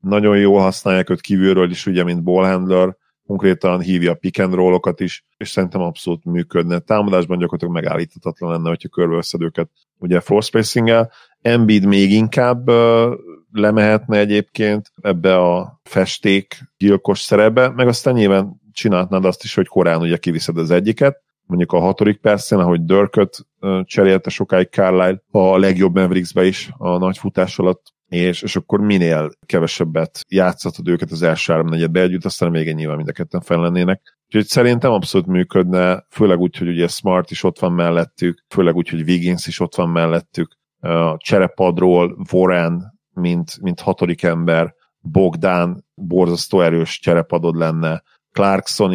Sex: male